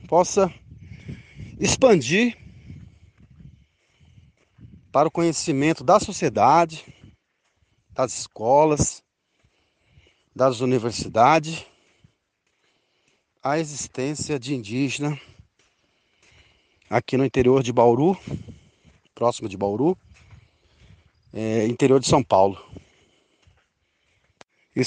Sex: male